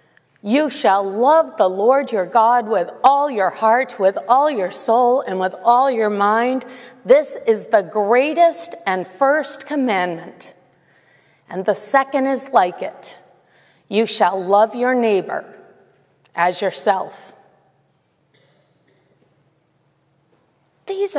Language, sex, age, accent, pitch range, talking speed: English, female, 40-59, American, 185-255 Hz, 115 wpm